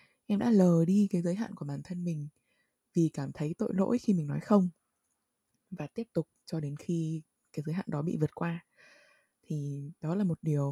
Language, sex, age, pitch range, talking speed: Vietnamese, female, 20-39, 150-195 Hz, 215 wpm